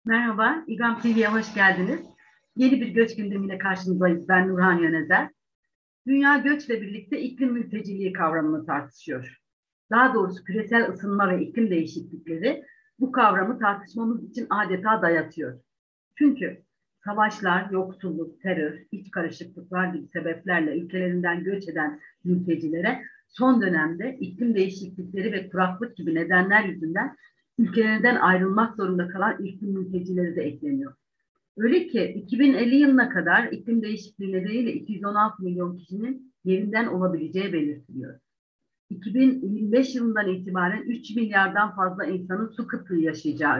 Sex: female